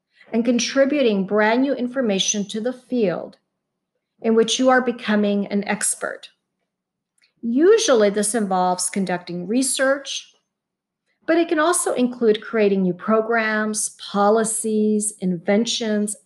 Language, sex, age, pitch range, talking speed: English, female, 40-59, 200-250 Hz, 110 wpm